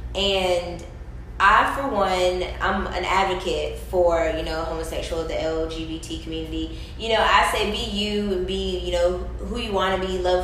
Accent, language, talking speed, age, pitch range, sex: American, English, 165 wpm, 10-29, 170-195 Hz, female